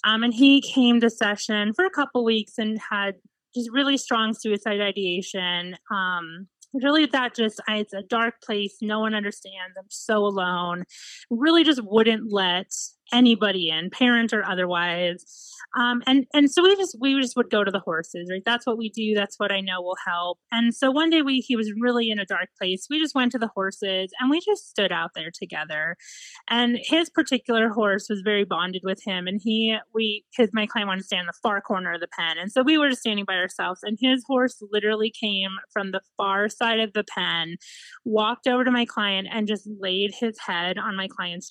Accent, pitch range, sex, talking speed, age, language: American, 190-245 Hz, female, 210 wpm, 30-49, English